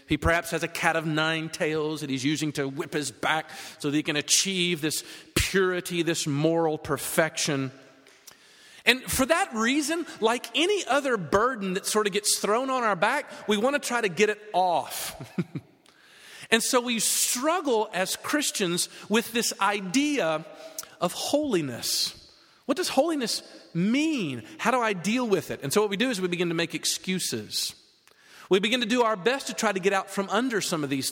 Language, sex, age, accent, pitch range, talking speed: English, male, 40-59, American, 160-245 Hz, 185 wpm